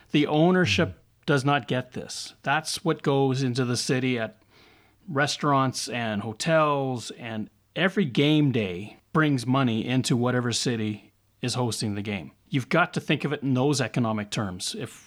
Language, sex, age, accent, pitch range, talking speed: English, male, 30-49, American, 110-140 Hz, 160 wpm